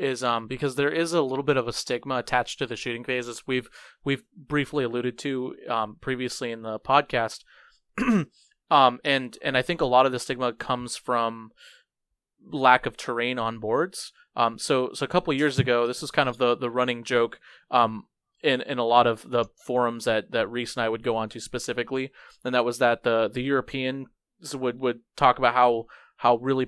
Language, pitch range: English, 115-135 Hz